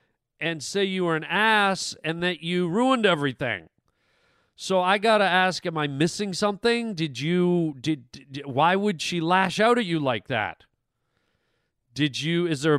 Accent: American